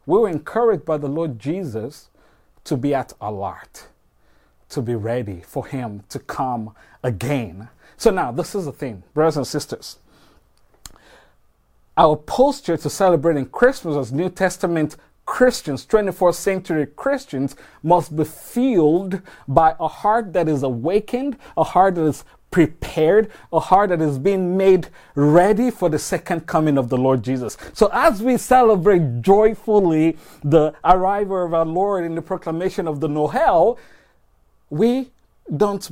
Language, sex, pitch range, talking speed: English, male, 140-195 Hz, 145 wpm